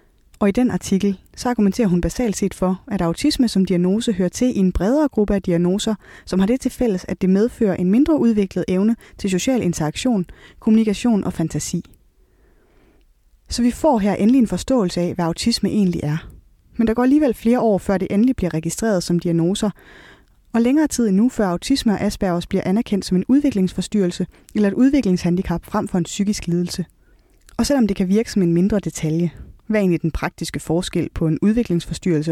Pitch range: 175-235 Hz